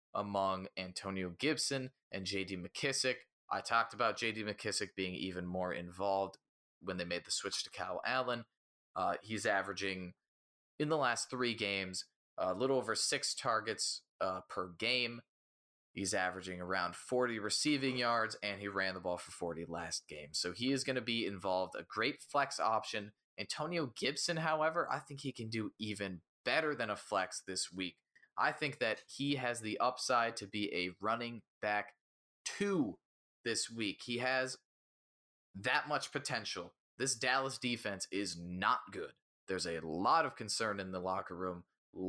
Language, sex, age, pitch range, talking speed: English, male, 20-39, 90-125 Hz, 165 wpm